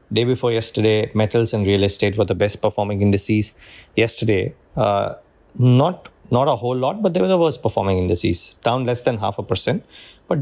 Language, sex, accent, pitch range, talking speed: English, male, Indian, 100-120 Hz, 190 wpm